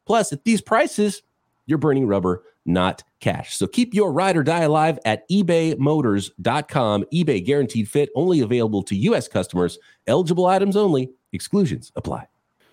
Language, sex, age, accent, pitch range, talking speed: English, male, 30-49, American, 100-145 Hz, 145 wpm